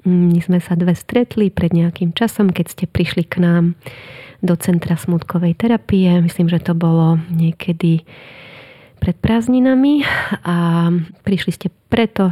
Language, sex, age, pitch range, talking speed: Slovak, female, 30-49, 170-190 Hz, 135 wpm